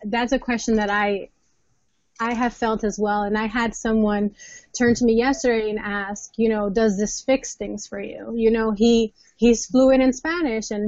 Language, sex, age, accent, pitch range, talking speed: English, female, 20-39, American, 210-255 Hz, 200 wpm